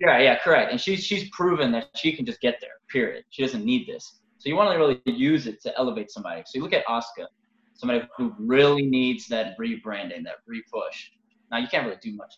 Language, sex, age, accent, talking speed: English, male, 20-39, American, 235 wpm